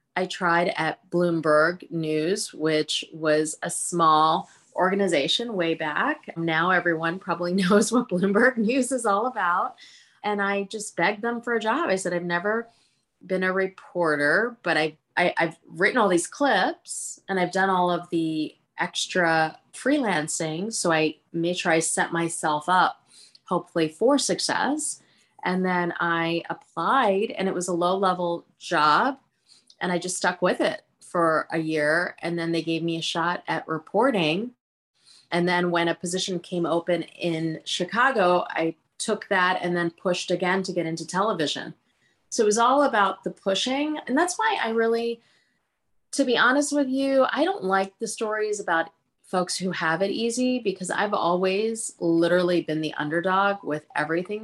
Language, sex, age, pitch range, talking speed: English, female, 30-49, 165-215 Hz, 165 wpm